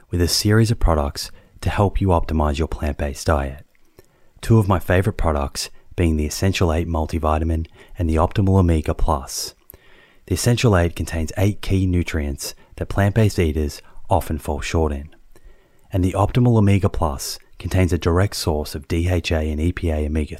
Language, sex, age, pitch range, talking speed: English, male, 30-49, 80-95 Hz, 160 wpm